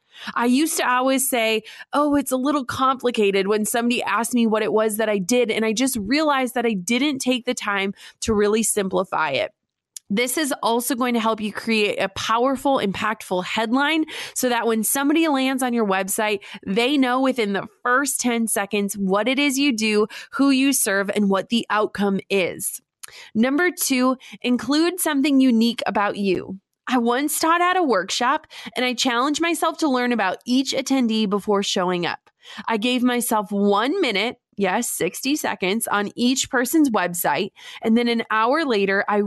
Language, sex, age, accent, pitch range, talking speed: English, female, 20-39, American, 210-270 Hz, 180 wpm